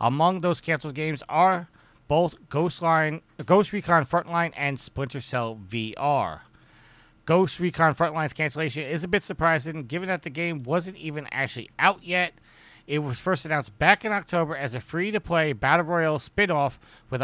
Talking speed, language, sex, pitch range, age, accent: 160 wpm, English, male, 130-170 Hz, 40-59, American